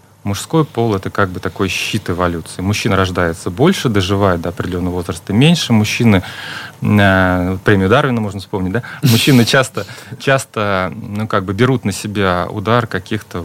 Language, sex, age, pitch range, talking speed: Russian, male, 30-49, 100-125 Hz, 150 wpm